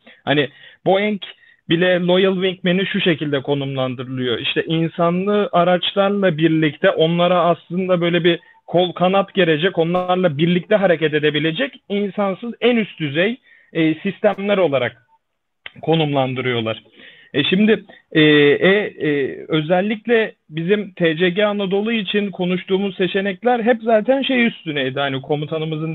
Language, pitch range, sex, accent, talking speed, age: Turkish, 160-190 Hz, male, native, 110 wpm, 40-59